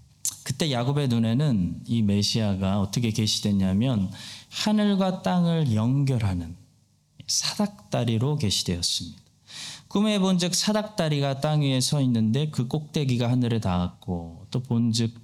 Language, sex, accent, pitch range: Korean, male, native, 105-145 Hz